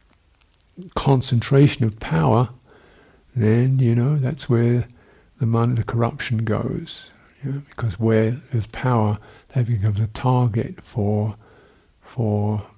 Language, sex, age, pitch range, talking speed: English, male, 50-69, 100-125 Hz, 110 wpm